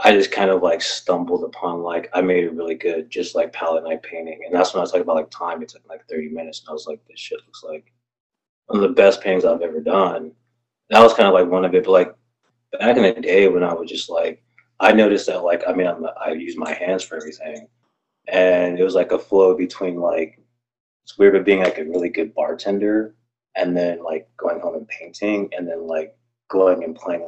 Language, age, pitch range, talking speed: English, 20-39, 90-120 Hz, 245 wpm